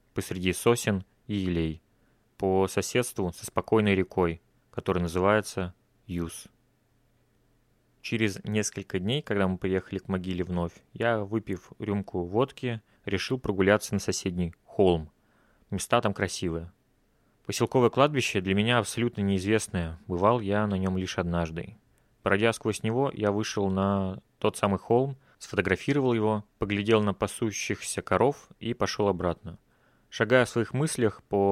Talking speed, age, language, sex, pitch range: 130 wpm, 30-49, Russian, male, 95-115 Hz